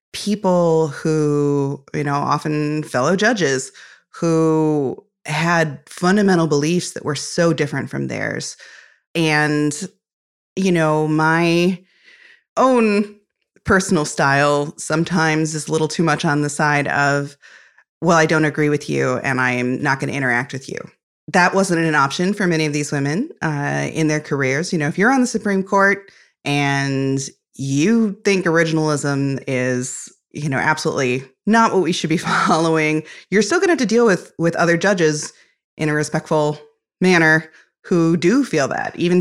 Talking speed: 160 wpm